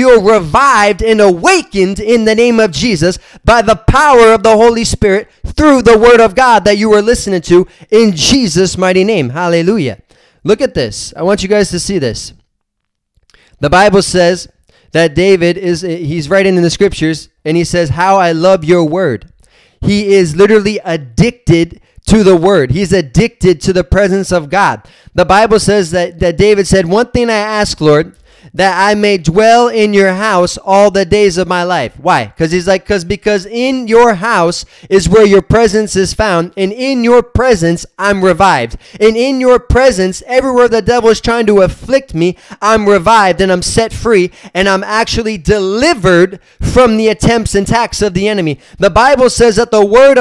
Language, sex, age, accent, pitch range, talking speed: English, male, 20-39, American, 185-225 Hz, 190 wpm